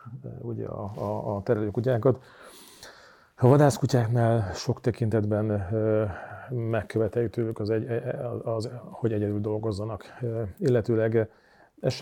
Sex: male